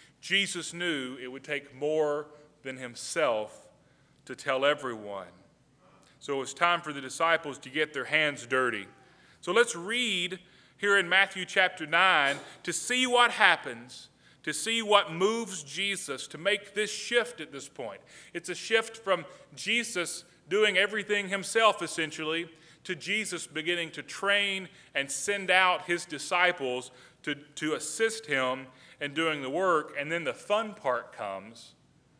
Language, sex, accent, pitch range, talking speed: English, male, American, 140-185 Hz, 150 wpm